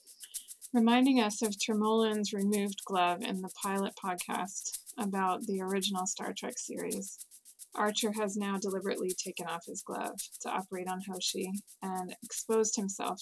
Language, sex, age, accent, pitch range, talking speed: English, female, 20-39, American, 185-220 Hz, 140 wpm